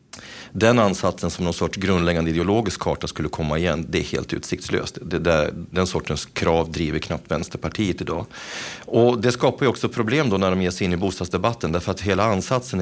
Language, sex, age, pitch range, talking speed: Swedish, male, 40-59, 80-100 Hz, 195 wpm